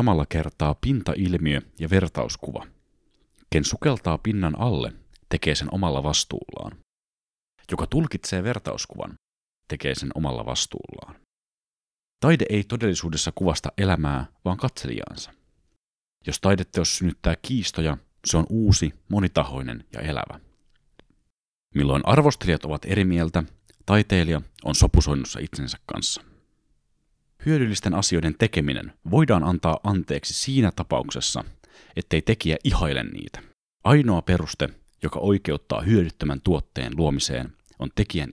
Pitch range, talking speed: 75-100 Hz, 110 wpm